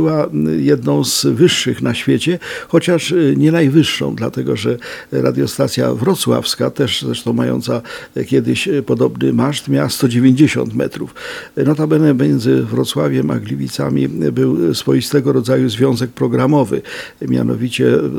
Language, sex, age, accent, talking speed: Polish, male, 50-69, native, 110 wpm